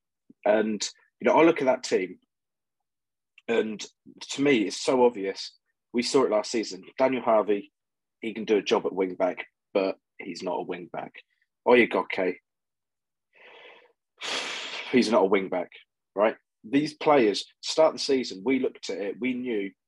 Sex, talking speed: male, 165 wpm